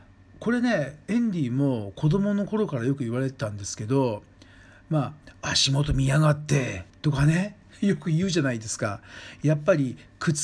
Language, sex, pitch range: Japanese, male, 115-160 Hz